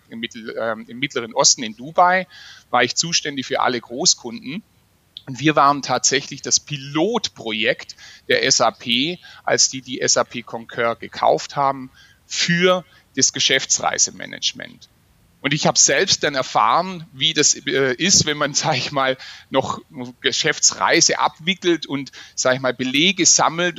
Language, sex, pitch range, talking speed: German, male, 130-160 Hz, 135 wpm